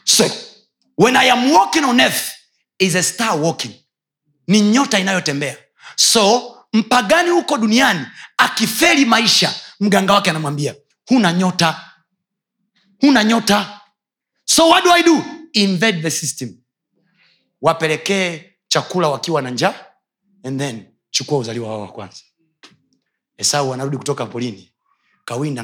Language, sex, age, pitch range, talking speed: Swahili, male, 30-49, 140-200 Hz, 120 wpm